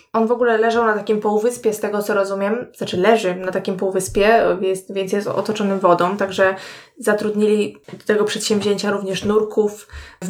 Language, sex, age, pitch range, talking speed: Polish, female, 20-39, 205-225 Hz, 165 wpm